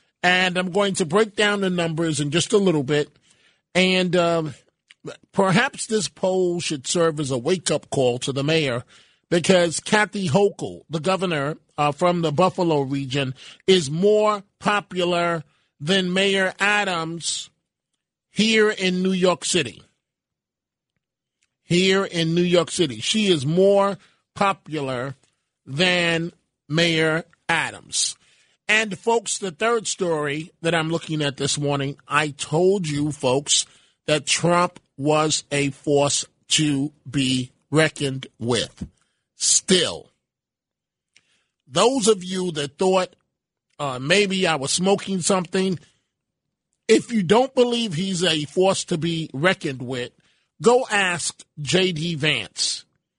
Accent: American